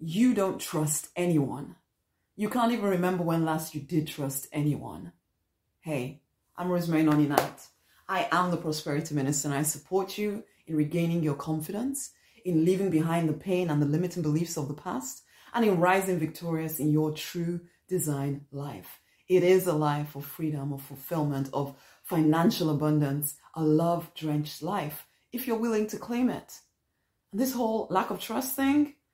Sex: female